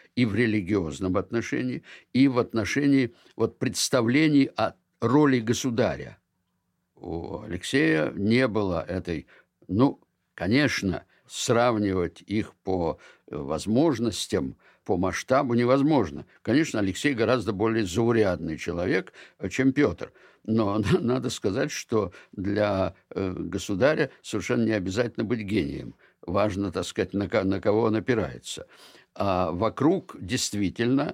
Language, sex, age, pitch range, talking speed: Russian, male, 60-79, 95-120 Hz, 100 wpm